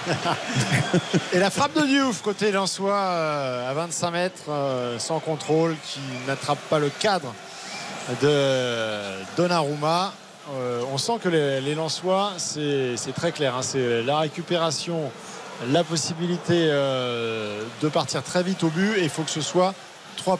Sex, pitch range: male, 145-185 Hz